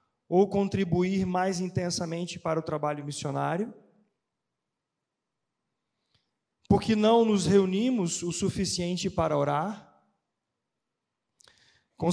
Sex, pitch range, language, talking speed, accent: male, 160-205 Hz, Portuguese, 85 wpm, Brazilian